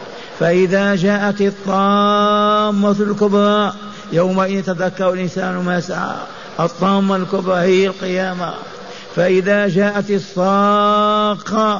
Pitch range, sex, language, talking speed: 180-205 Hz, male, Arabic, 80 wpm